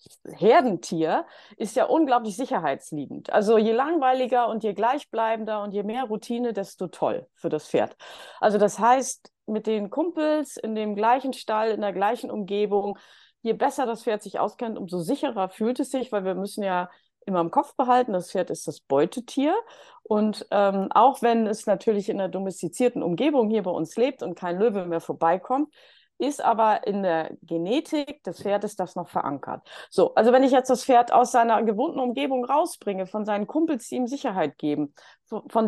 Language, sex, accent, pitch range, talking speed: German, female, German, 190-250 Hz, 180 wpm